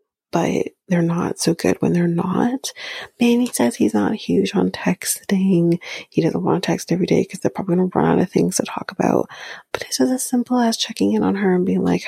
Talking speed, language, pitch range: 235 wpm, English, 175-220 Hz